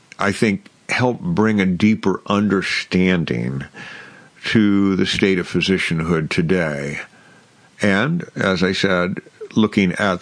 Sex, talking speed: male, 110 wpm